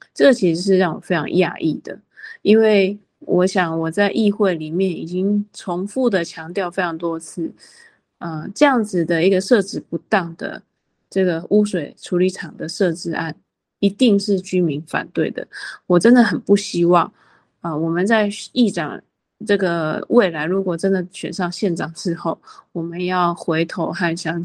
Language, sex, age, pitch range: Chinese, female, 20-39, 170-200 Hz